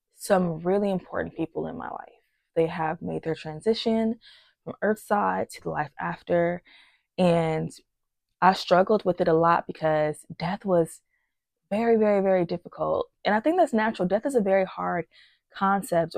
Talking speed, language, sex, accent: 165 wpm, English, female, American